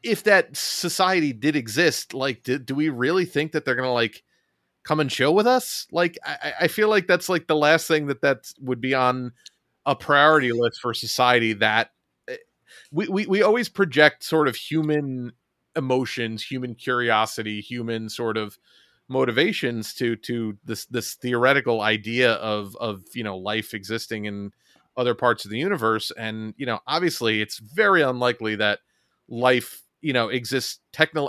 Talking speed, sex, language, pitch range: 165 wpm, male, English, 110-140 Hz